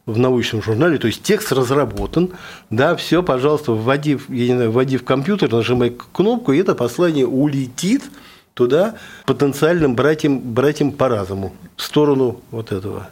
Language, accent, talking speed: Russian, native, 135 wpm